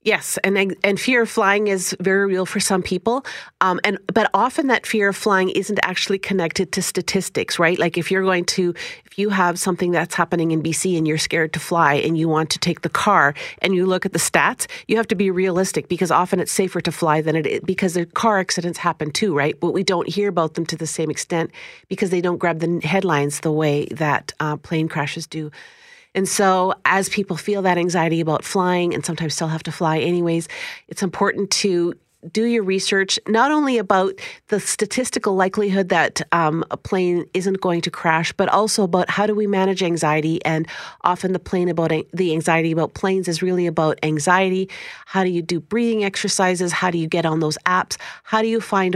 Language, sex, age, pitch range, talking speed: English, female, 40-59, 165-195 Hz, 215 wpm